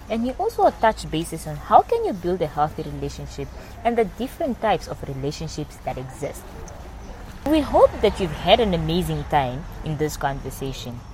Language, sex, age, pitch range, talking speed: English, female, 20-39, 135-195 Hz, 170 wpm